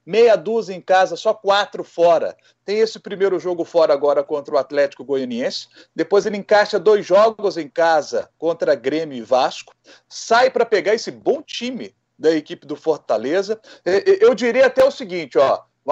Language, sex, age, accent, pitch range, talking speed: Portuguese, male, 40-59, Brazilian, 170-255 Hz, 170 wpm